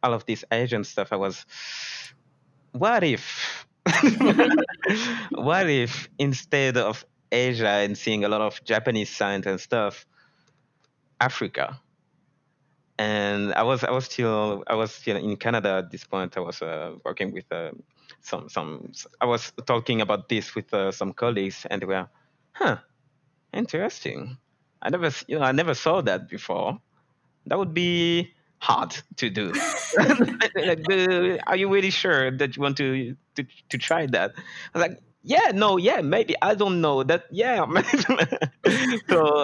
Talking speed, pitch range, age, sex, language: 155 wpm, 105-150 Hz, 20-39, male, English